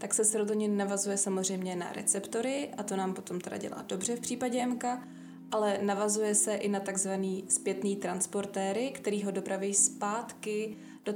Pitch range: 195-215 Hz